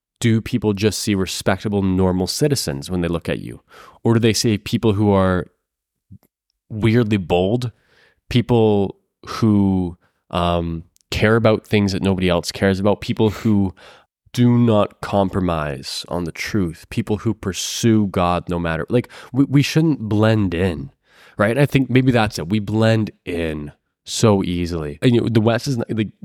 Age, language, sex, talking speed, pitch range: 20-39, English, male, 155 wpm, 90-110 Hz